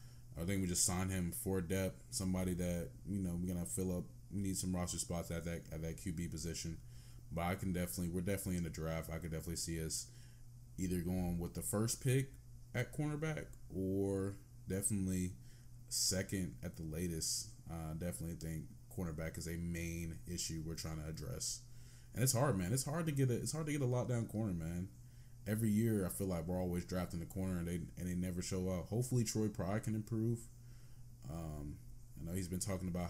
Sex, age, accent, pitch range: male, 20-39, American, 90-120 Hz